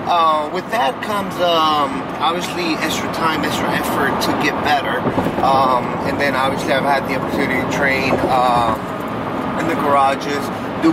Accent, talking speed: American, 155 wpm